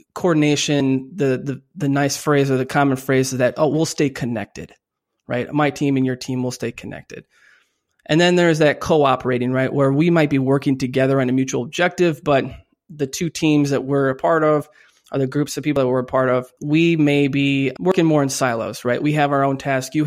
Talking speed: 220 wpm